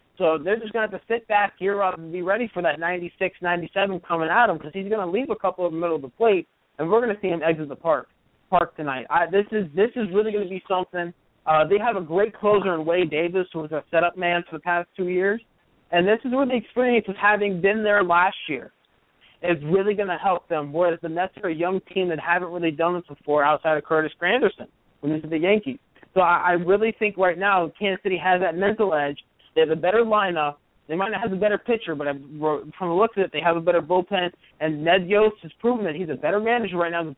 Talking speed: 260 wpm